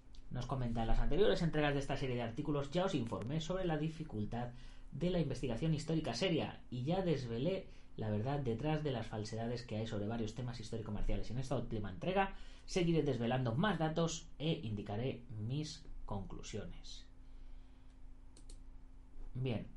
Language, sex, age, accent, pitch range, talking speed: Spanish, female, 30-49, Spanish, 105-140 Hz, 155 wpm